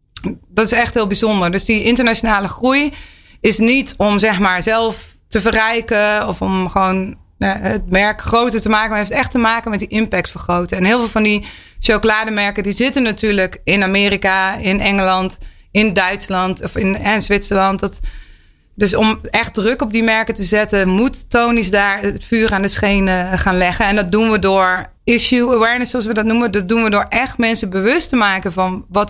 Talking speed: 200 wpm